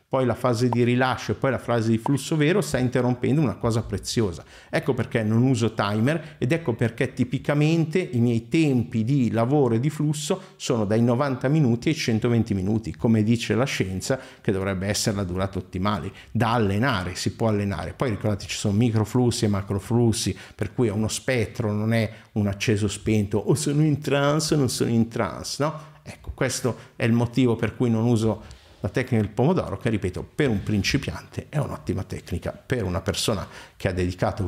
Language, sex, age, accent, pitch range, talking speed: Italian, male, 50-69, native, 105-130 Hz, 190 wpm